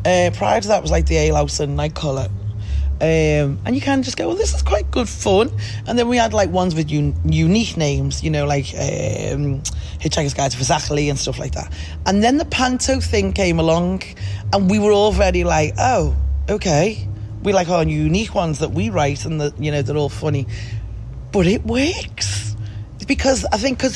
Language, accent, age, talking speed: English, British, 30-49, 210 wpm